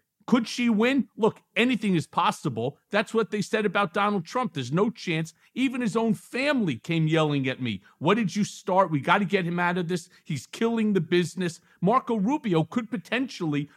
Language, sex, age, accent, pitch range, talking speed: English, male, 50-69, American, 160-215 Hz, 195 wpm